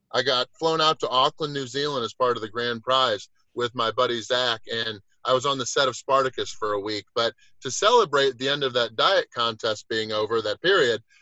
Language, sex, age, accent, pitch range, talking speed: English, male, 30-49, American, 130-165 Hz, 225 wpm